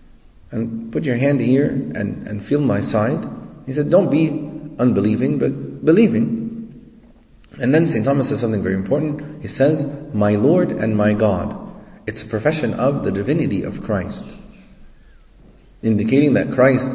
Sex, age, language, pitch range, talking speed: male, 30-49, English, 120-150 Hz, 150 wpm